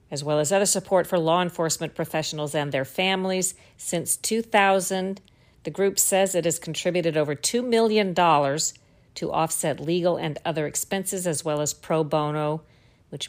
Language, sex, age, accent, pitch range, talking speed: English, female, 50-69, American, 150-180 Hz, 160 wpm